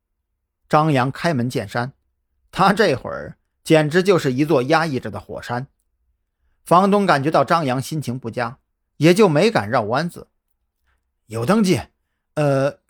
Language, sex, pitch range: Chinese, male, 100-165 Hz